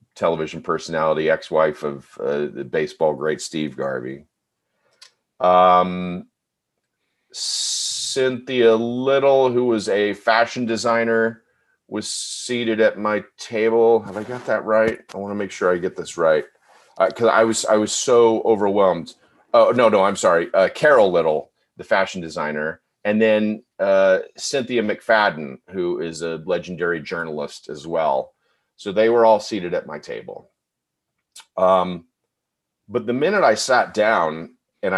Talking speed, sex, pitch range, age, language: 145 wpm, male, 90-120 Hz, 40-59, English